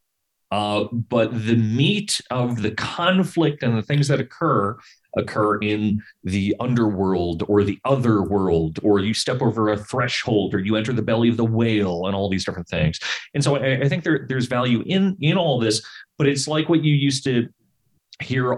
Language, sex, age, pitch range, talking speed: English, male, 30-49, 105-140 Hz, 185 wpm